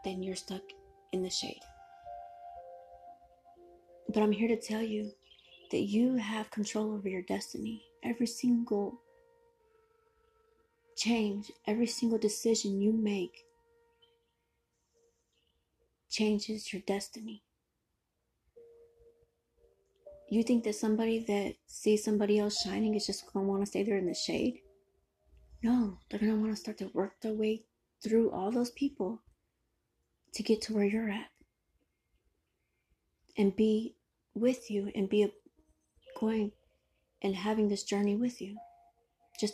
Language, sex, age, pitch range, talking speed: Amharic, female, 30-49, 200-295 Hz, 125 wpm